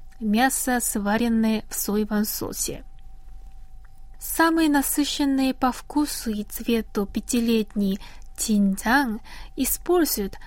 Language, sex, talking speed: Russian, female, 80 wpm